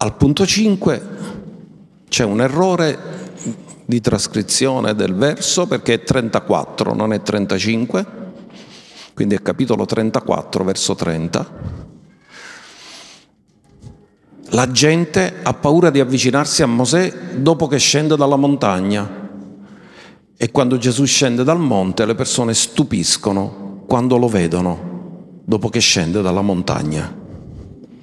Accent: native